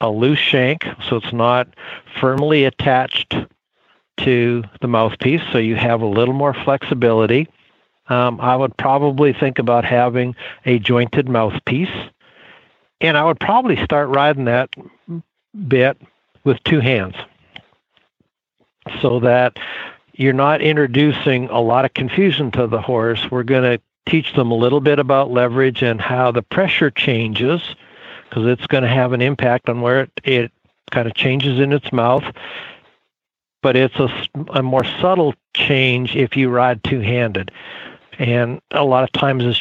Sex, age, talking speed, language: male, 60-79, 150 wpm, English